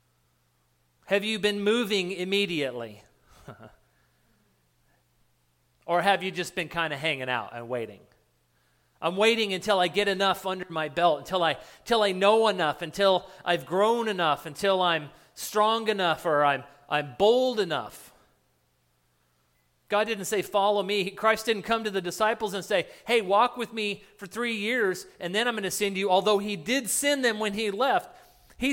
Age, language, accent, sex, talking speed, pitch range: 40-59, English, American, male, 165 wpm, 150-210 Hz